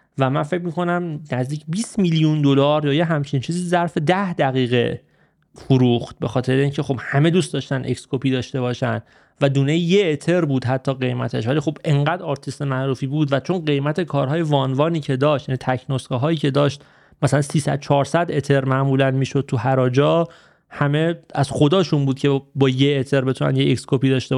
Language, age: Persian, 30-49